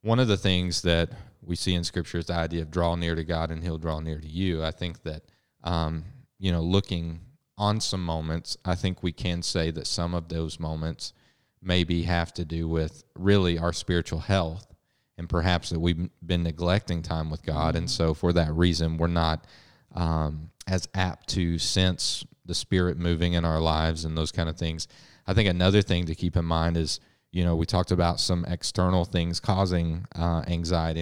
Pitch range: 80-90 Hz